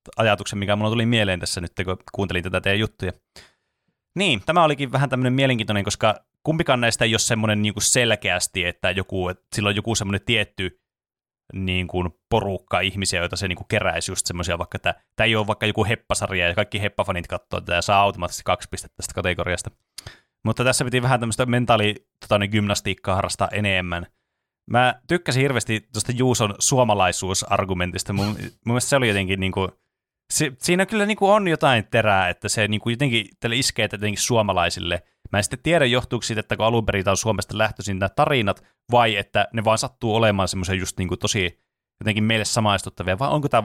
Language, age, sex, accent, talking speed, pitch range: Finnish, 30-49, male, native, 170 wpm, 95-115 Hz